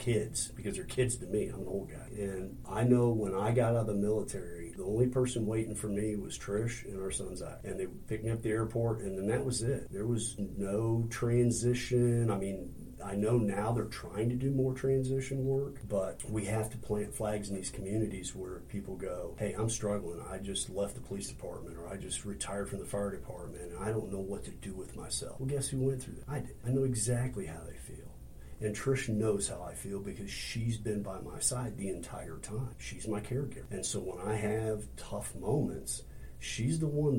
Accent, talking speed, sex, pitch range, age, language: American, 225 wpm, male, 100-120 Hz, 40-59, English